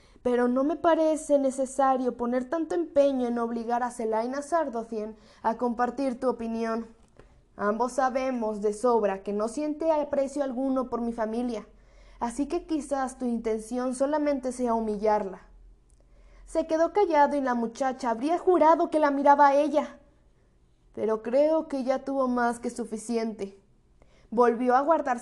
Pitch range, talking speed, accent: 220-285 Hz, 145 wpm, Mexican